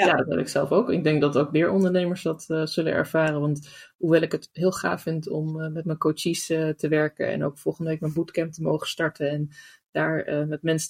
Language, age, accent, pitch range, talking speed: Dutch, 20-39, Dutch, 150-175 Hz, 250 wpm